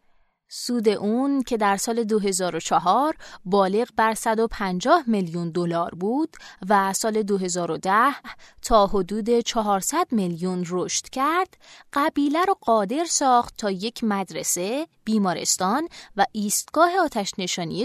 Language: Persian